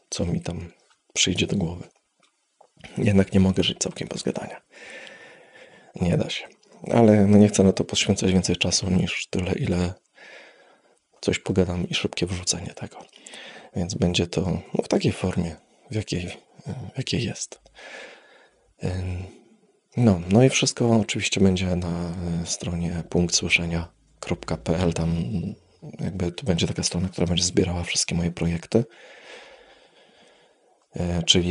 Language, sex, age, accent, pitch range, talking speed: Polish, male, 20-39, native, 85-95 Hz, 130 wpm